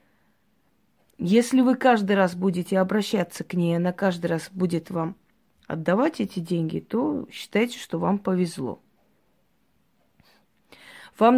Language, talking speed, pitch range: Russian, 115 wpm, 175-225 Hz